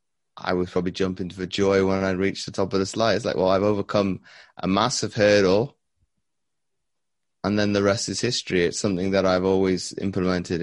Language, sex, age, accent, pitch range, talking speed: English, male, 20-39, British, 80-95 Hz, 190 wpm